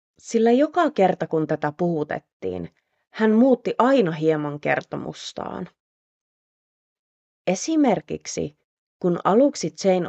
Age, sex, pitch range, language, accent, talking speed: 30-49, female, 150-225 Hz, Finnish, native, 90 wpm